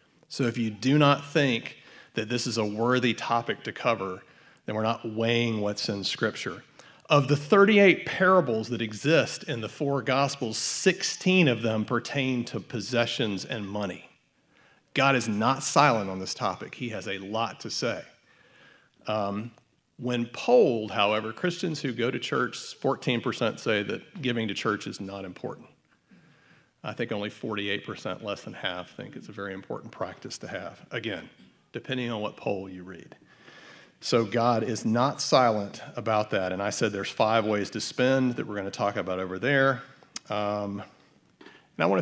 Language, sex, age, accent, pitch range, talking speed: English, male, 40-59, American, 105-135 Hz, 170 wpm